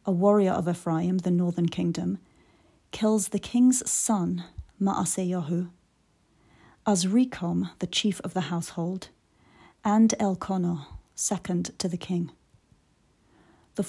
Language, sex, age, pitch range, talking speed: English, female, 30-49, 175-210 Hz, 110 wpm